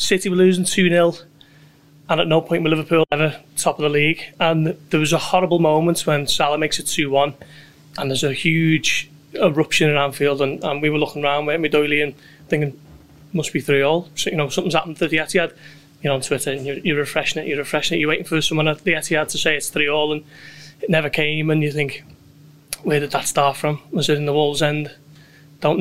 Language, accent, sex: English, British, male